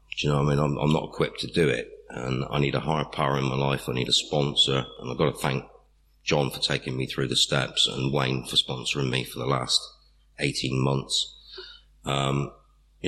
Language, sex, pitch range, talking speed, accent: English, male, 70-80 Hz, 225 wpm, British